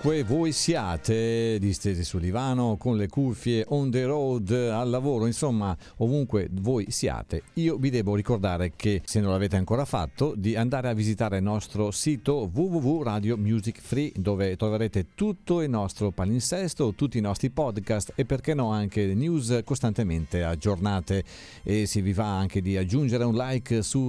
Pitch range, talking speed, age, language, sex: 100-145 Hz, 155 wpm, 50-69, Italian, male